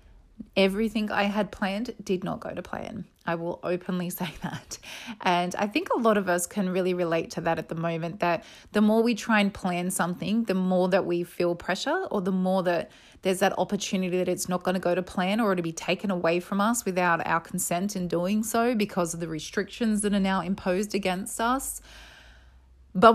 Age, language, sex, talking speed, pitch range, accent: 30-49, English, female, 215 wpm, 175-205 Hz, Australian